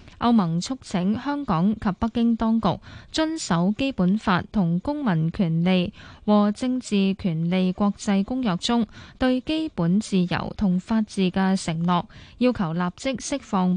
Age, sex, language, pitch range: 10-29, female, Chinese, 180-230 Hz